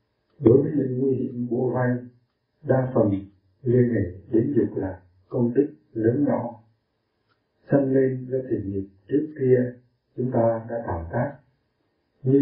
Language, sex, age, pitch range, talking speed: Vietnamese, male, 60-79, 105-125 Hz, 150 wpm